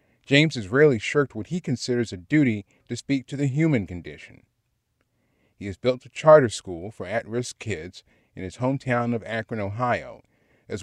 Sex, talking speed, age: male, 170 wpm, 40-59